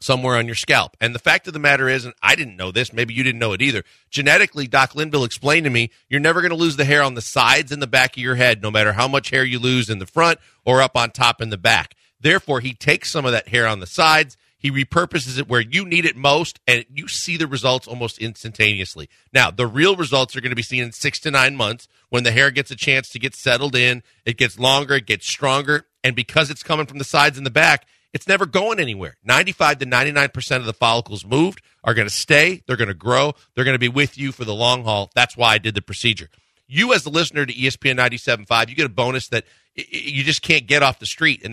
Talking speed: 260 wpm